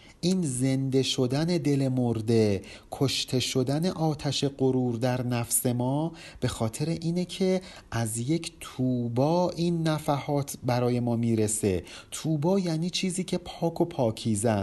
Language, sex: Persian, male